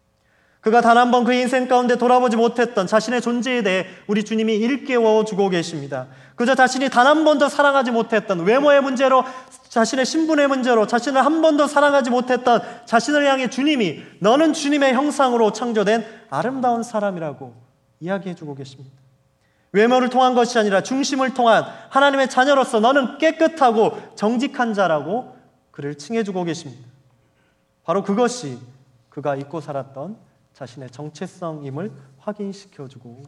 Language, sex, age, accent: Korean, male, 30-49, native